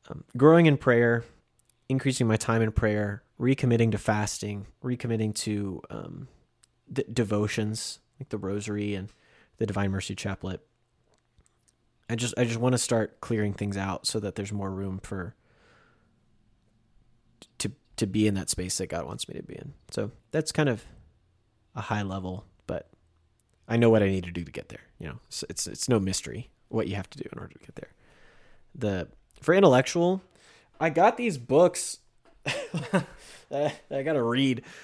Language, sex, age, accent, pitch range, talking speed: English, male, 30-49, American, 95-120 Hz, 170 wpm